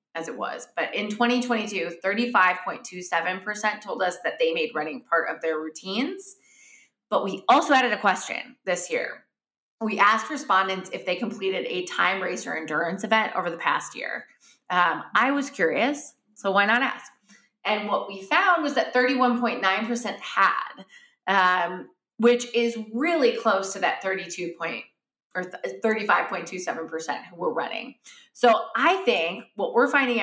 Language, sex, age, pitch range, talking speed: English, female, 20-39, 190-255 Hz, 150 wpm